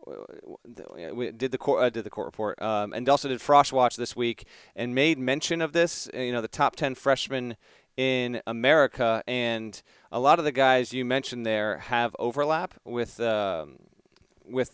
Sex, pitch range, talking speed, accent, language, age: male, 120-145 Hz, 180 wpm, American, English, 30-49